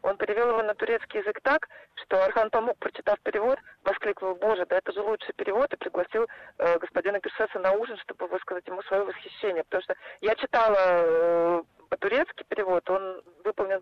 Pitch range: 185-235 Hz